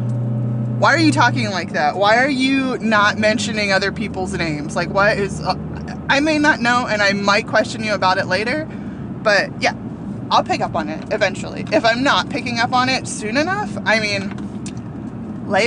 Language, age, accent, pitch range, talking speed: English, 20-39, American, 190-245 Hz, 190 wpm